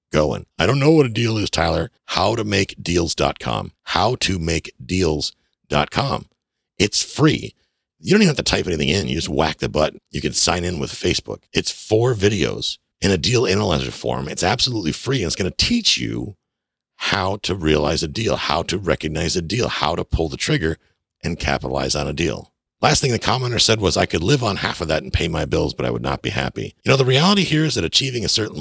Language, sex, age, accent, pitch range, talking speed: English, male, 50-69, American, 75-120 Hz, 225 wpm